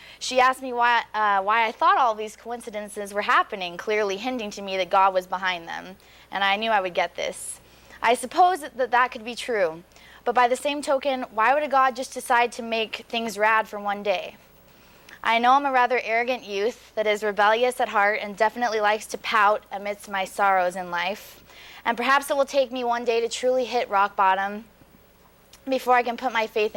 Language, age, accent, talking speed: English, 20-39, American, 215 wpm